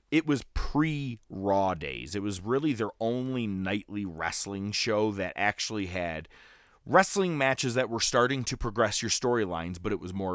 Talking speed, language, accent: 160 wpm, English, American